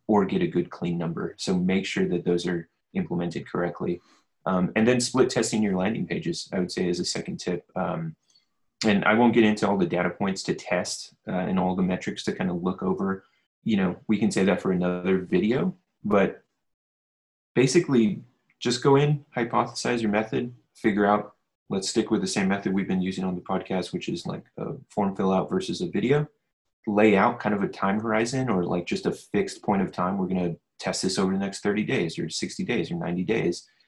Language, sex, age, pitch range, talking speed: English, male, 20-39, 90-125 Hz, 220 wpm